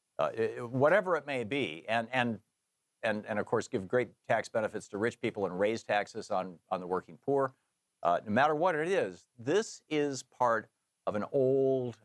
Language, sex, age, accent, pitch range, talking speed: English, male, 50-69, American, 90-125 Hz, 190 wpm